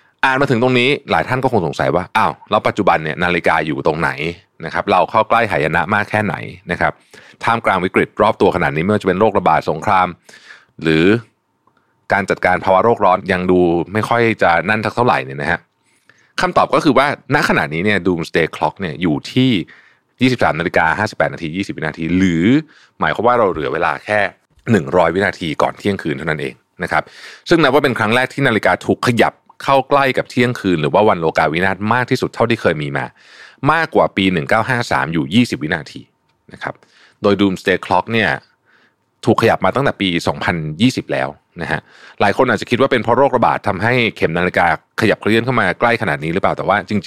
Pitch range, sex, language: 90-120 Hz, male, Thai